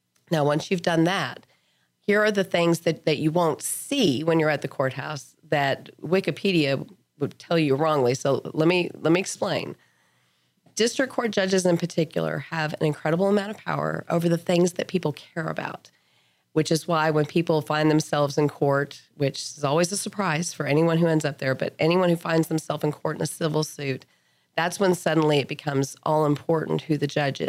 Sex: female